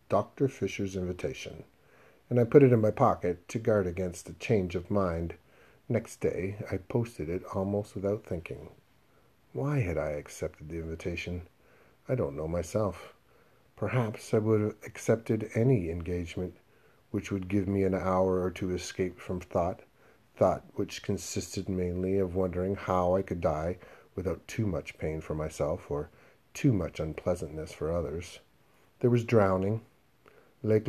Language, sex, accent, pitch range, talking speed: English, male, American, 90-110 Hz, 155 wpm